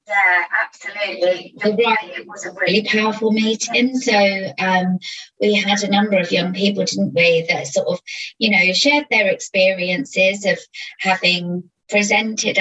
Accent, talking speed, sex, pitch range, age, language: British, 150 wpm, female, 185-220 Hz, 30-49, English